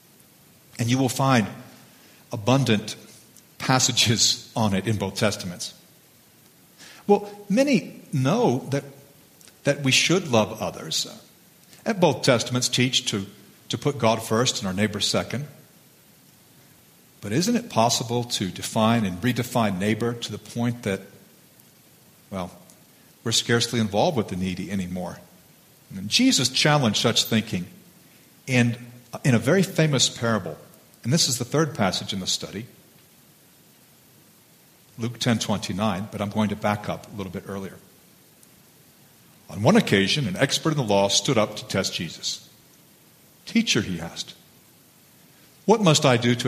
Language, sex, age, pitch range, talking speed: English, male, 50-69, 105-135 Hz, 140 wpm